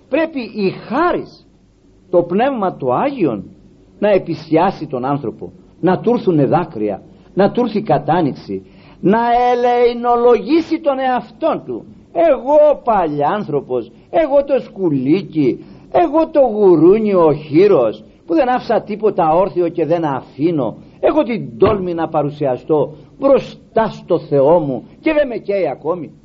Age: 50-69